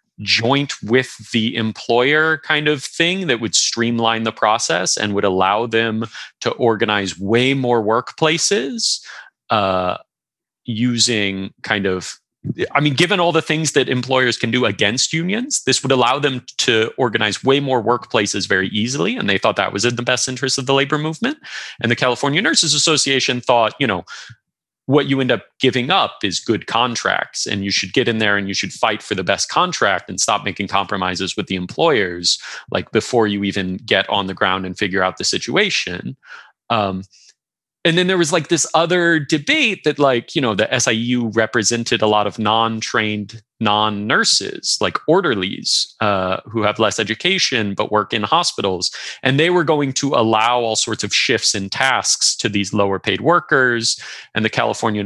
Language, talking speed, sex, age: Swedish, 180 wpm, male, 30-49